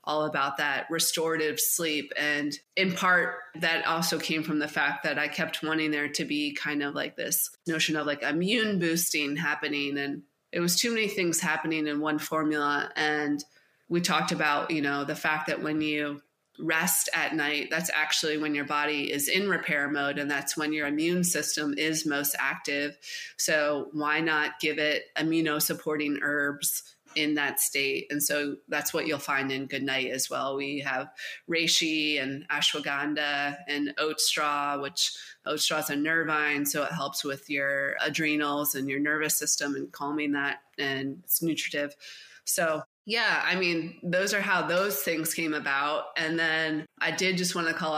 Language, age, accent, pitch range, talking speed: English, 20-39, American, 145-165 Hz, 180 wpm